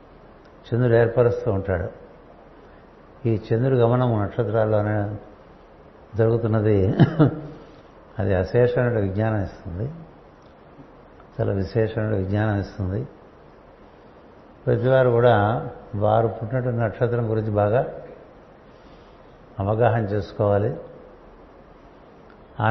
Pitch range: 100-115 Hz